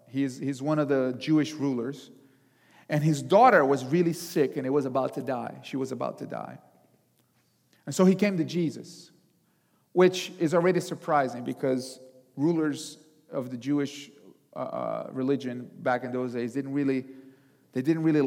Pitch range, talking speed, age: 135-180 Hz, 165 wpm, 40-59